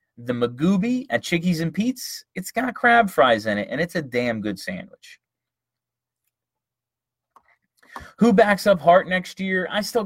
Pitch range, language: 120-195 Hz, English